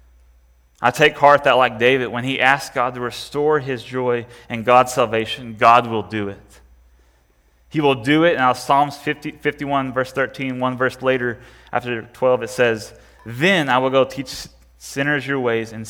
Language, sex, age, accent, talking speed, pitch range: English, male, 30-49, American, 175 wpm, 100-130 Hz